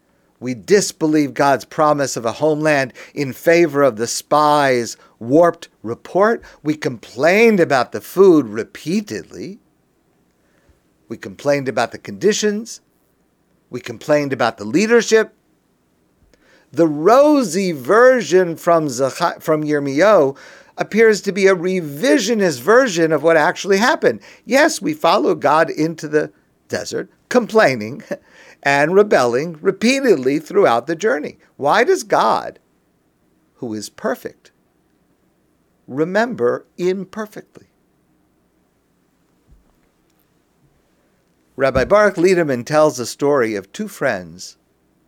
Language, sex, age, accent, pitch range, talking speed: English, male, 50-69, American, 135-200 Hz, 105 wpm